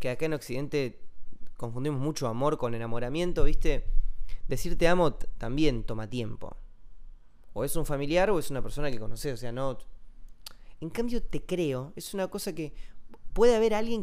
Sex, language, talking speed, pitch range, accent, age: male, Spanish, 170 wpm, 110-170 Hz, Argentinian, 20-39